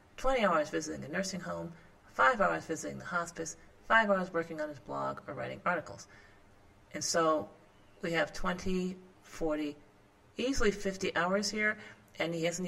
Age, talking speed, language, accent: 40-59, 155 wpm, English, American